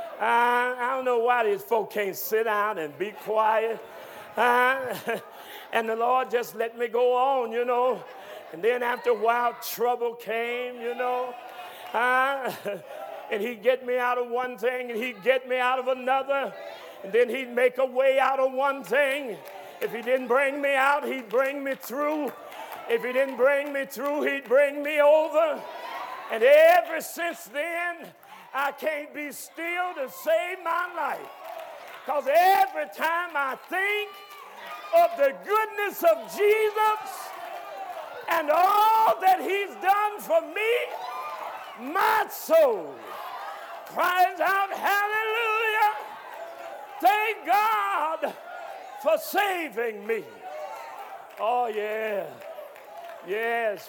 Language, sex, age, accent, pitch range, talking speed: English, male, 50-69, American, 245-350 Hz, 135 wpm